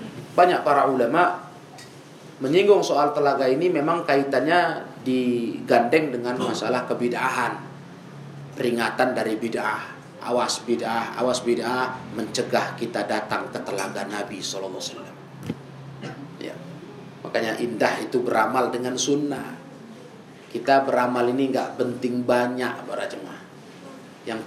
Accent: native